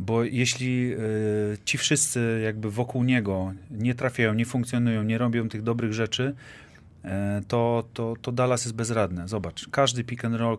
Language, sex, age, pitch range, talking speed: Polish, male, 30-49, 100-115 Hz, 155 wpm